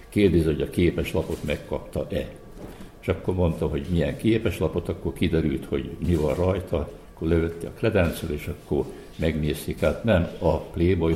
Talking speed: 160 wpm